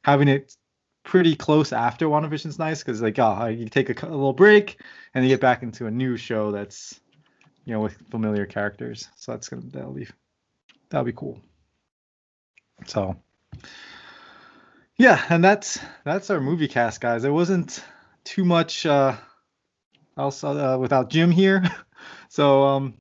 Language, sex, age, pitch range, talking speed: English, male, 20-39, 115-150 Hz, 155 wpm